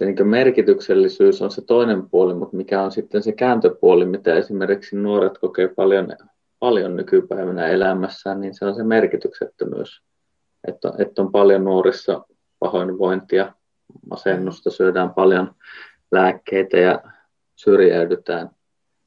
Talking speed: 115 wpm